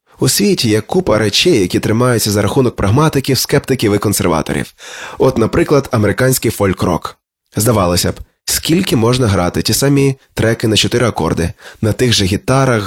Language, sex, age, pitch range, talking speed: Ukrainian, male, 20-39, 100-135 Hz, 150 wpm